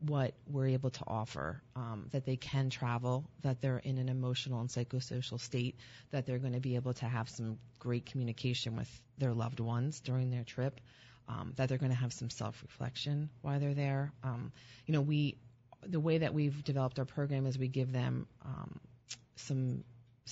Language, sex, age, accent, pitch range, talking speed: English, female, 30-49, American, 125-145 Hz, 190 wpm